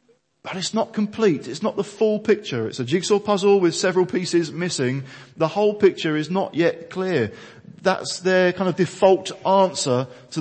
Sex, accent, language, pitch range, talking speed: male, British, English, 120-170 Hz, 180 wpm